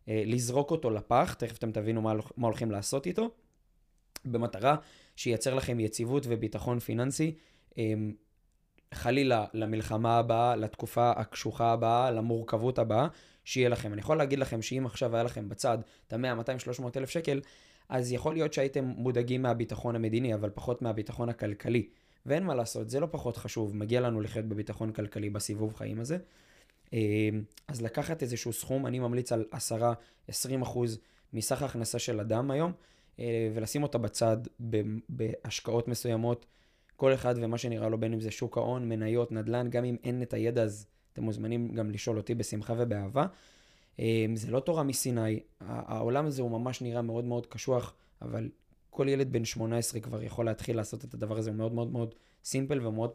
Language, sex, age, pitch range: Hebrew, male, 20-39, 110-125 Hz